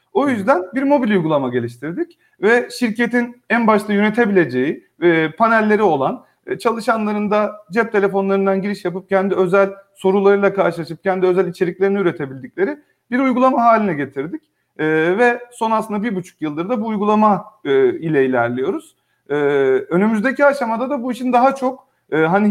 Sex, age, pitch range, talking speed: male, 40-59, 185-245 Hz, 150 wpm